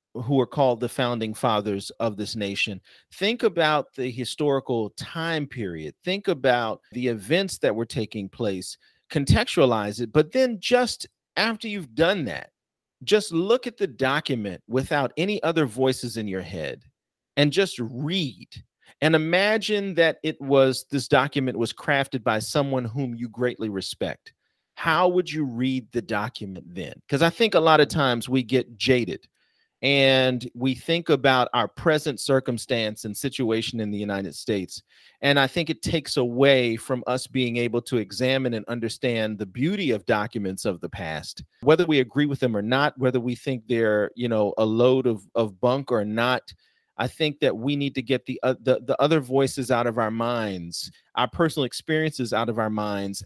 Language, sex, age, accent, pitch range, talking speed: English, male, 40-59, American, 115-140 Hz, 175 wpm